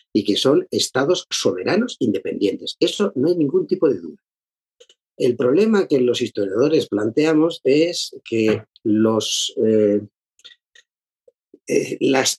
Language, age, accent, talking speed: Spanish, 50-69, Spanish, 115 wpm